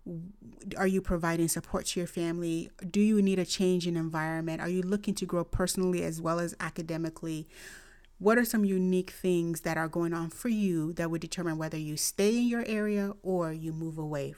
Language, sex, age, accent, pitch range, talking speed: English, female, 30-49, American, 170-215 Hz, 200 wpm